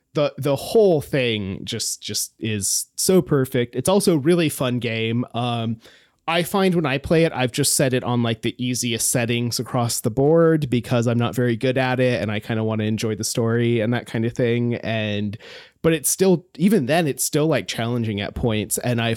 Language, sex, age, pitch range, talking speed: English, male, 30-49, 115-145 Hz, 215 wpm